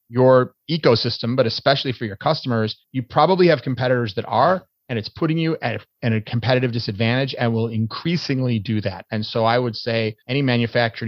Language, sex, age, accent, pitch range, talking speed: English, male, 30-49, American, 115-140 Hz, 185 wpm